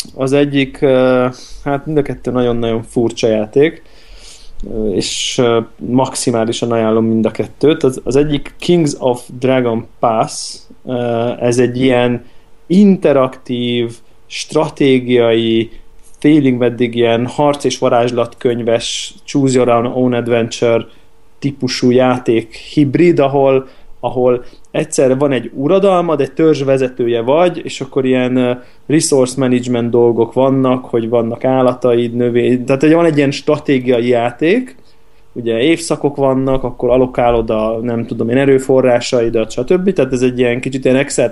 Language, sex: Hungarian, male